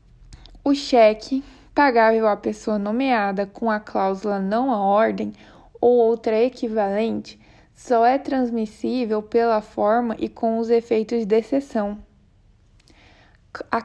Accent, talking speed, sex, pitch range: Brazilian, 115 wpm, female, 215-250 Hz